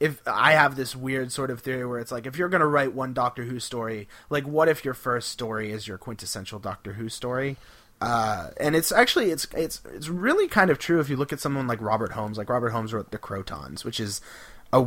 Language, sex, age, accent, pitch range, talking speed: English, male, 30-49, American, 110-150 Hz, 240 wpm